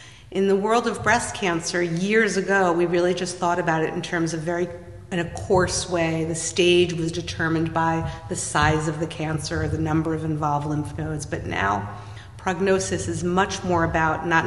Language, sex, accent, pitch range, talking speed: English, female, American, 160-175 Hz, 195 wpm